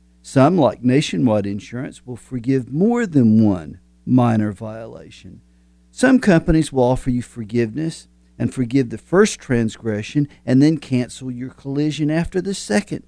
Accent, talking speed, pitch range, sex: American, 140 wpm, 110-145 Hz, male